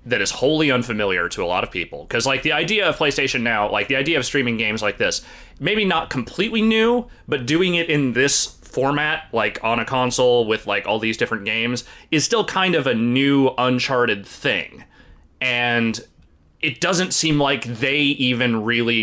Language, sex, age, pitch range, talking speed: English, male, 30-49, 115-155 Hz, 190 wpm